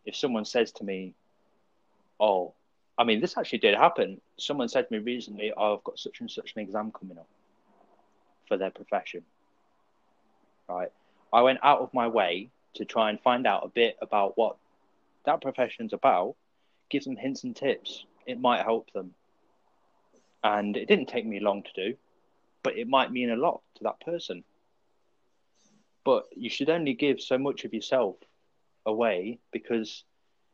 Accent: British